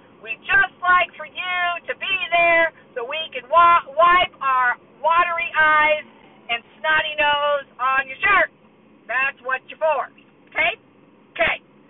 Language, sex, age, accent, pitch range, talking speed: English, female, 50-69, American, 270-390 Hz, 140 wpm